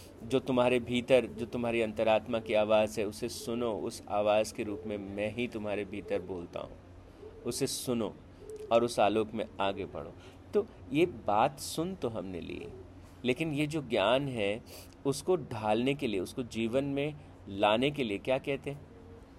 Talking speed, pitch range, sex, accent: 170 wpm, 105-150 Hz, male, native